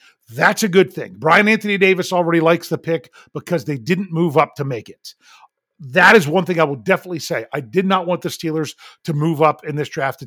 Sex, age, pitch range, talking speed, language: male, 40-59, 155-200 Hz, 235 wpm, English